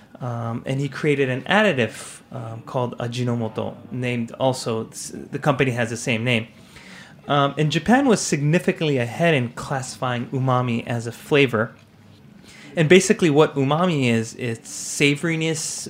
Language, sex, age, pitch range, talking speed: English, male, 30-49, 120-150 Hz, 135 wpm